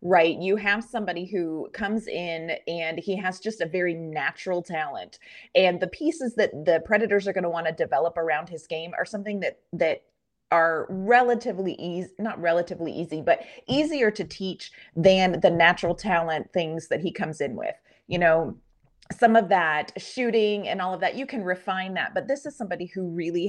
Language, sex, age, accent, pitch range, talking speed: English, female, 30-49, American, 165-210 Hz, 190 wpm